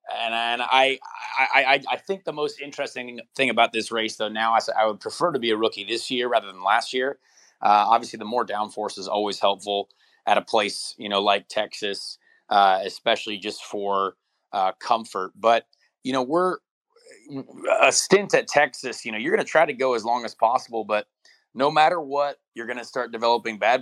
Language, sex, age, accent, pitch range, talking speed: English, male, 30-49, American, 110-135 Hz, 200 wpm